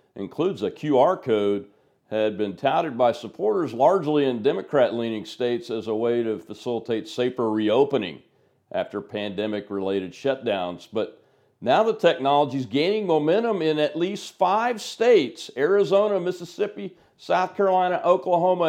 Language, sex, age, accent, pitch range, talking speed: English, male, 50-69, American, 115-185 Hz, 130 wpm